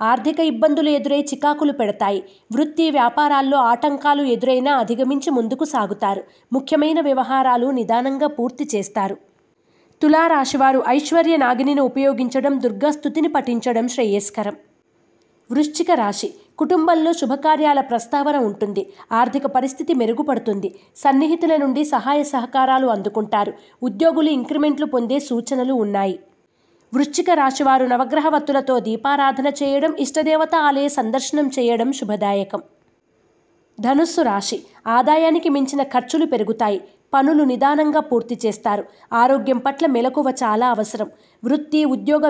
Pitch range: 235-295 Hz